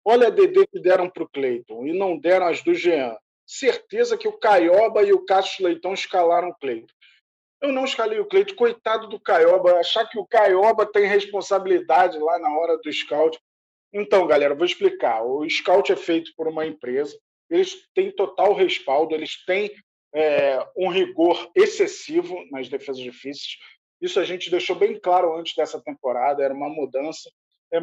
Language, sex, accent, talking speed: Portuguese, male, Brazilian, 175 wpm